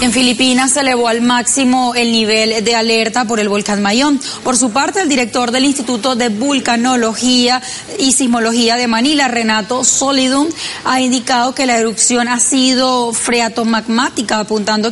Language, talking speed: Spanish, 155 wpm